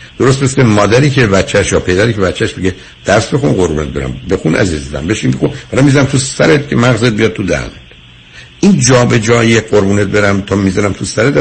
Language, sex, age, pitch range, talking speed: Persian, male, 60-79, 90-125 Hz, 190 wpm